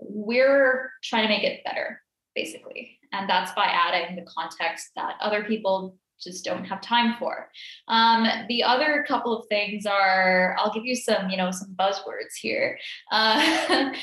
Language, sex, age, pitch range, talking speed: English, female, 10-29, 195-240 Hz, 165 wpm